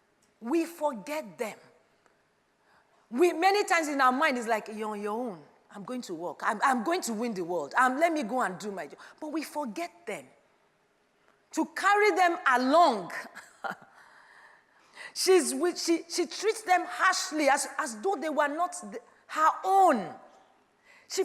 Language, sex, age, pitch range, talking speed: English, female, 40-59, 230-350 Hz, 165 wpm